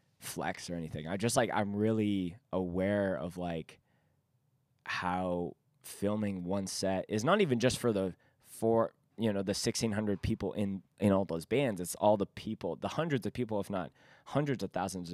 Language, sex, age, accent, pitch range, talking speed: English, male, 20-39, American, 90-125 Hz, 180 wpm